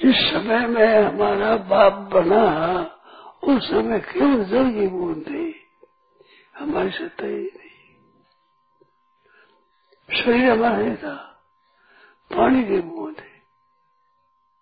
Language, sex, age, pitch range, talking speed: Hindi, male, 60-79, 195-330 Hz, 90 wpm